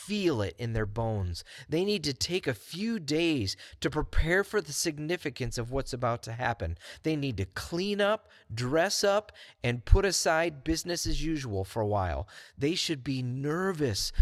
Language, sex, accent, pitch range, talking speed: English, male, American, 100-150 Hz, 175 wpm